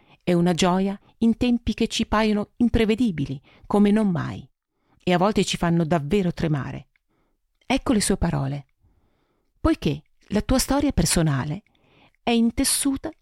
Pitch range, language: 165-225 Hz, Italian